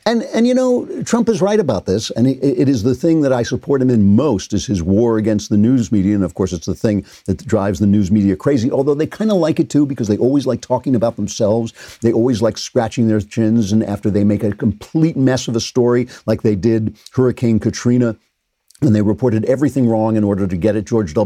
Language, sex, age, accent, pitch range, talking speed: English, male, 50-69, American, 100-125 Hz, 245 wpm